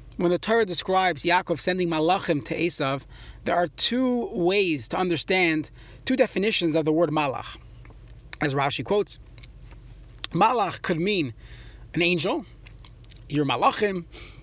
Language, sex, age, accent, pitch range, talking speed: English, male, 30-49, American, 130-200 Hz, 130 wpm